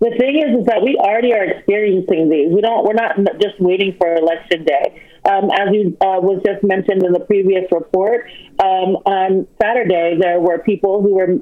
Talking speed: 205 wpm